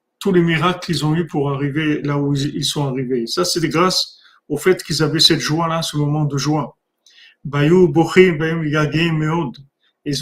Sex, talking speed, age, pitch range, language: male, 160 wpm, 50-69, 150-185 Hz, French